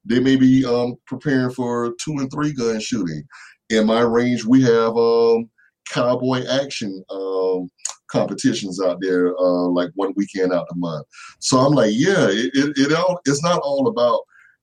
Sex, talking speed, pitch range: male, 175 wpm, 95-130 Hz